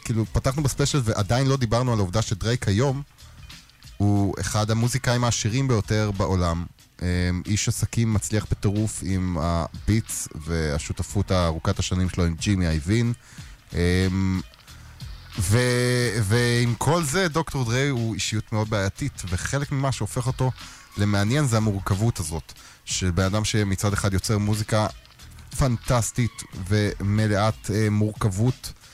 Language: Hebrew